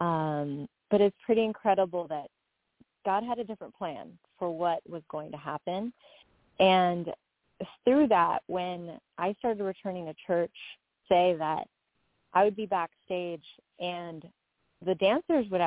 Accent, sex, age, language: American, female, 30-49, English